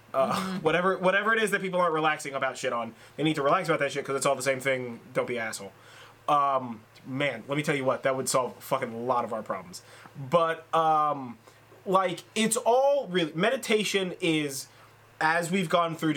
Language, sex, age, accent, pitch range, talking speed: English, male, 20-39, American, 125-170 Hz, 210 wpm